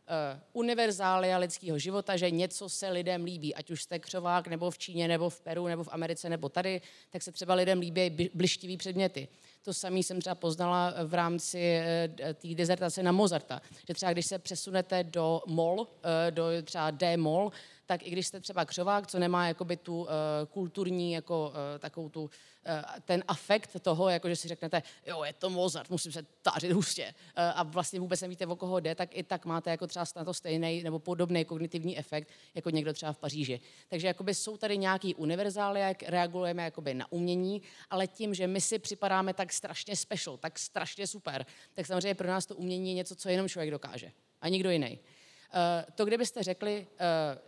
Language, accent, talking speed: Czech, native, 185 wpm